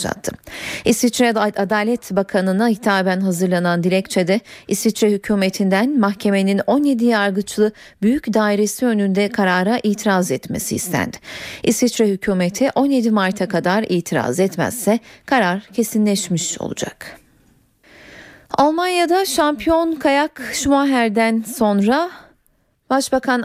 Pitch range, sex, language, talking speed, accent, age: 185-245 Hz, female, Turkish, 90 wpm, native, 40-59